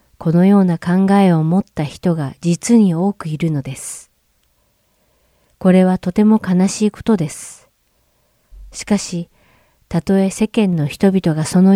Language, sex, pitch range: Japanese, female, 155-190 Hz